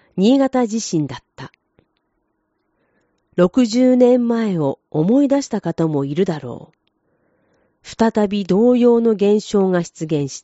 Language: Japanese